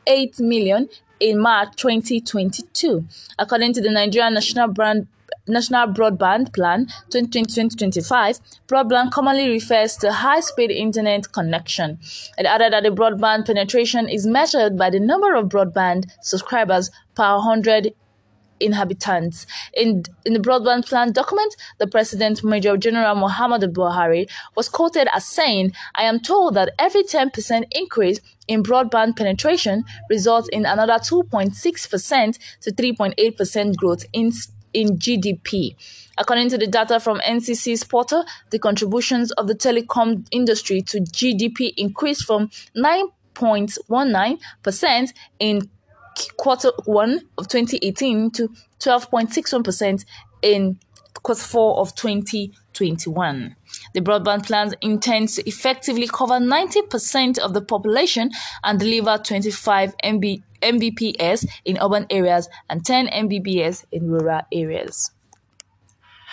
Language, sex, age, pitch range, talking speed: English, female, 20-39, 200-240 Hz, 120 wpm